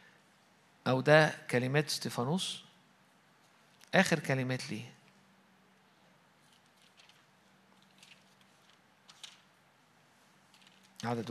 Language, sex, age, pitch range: Arabic, male, 50-69, 140-175 Hz